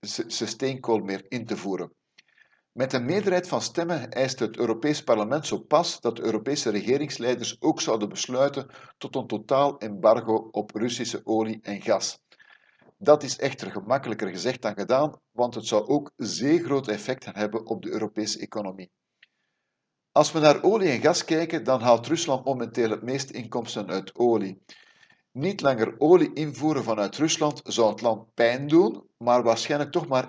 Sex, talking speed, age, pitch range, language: male, 160 wpm, 50-69, 110-140 Hz, Dutch